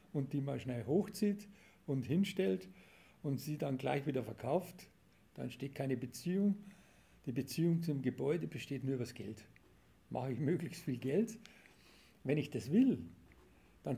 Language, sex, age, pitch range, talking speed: German, male, 50-69, 125-160 Hz, 155 wpm